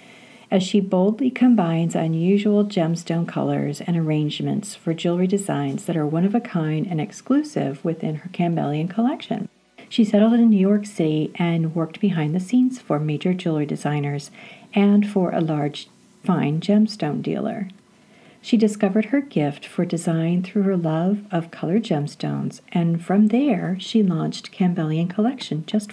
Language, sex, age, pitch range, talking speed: English, female, 50-69, 165-220 Hz, 145 wpm